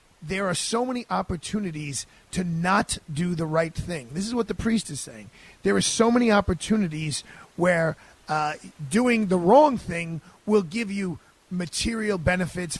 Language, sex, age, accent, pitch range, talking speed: English, male, 30-49, American, 150-200 Hz, 160 wpm